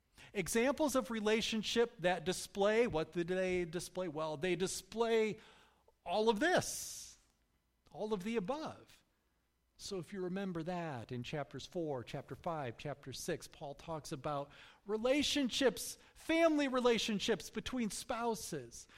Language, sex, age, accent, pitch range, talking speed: English, male, 40-59, American, 155-225 Hz, 125 wpm